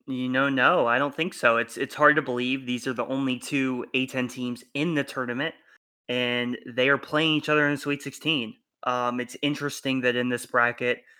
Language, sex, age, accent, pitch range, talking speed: English, male, 20-39, American, 115-130 Hz, 210 wpm